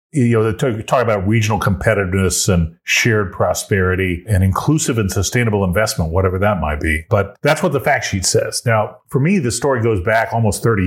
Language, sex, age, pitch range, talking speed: English, male, 40-59, 95-120 Hz, 195 wpm